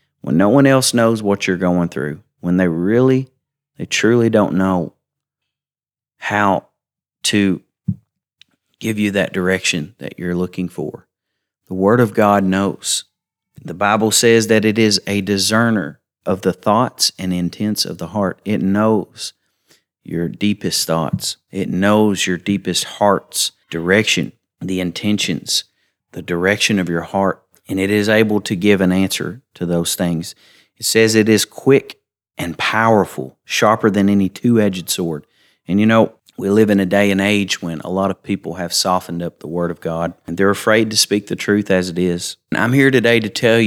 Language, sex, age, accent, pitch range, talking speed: English, male, 40-59, American, 90-110 Hz, 175 wpm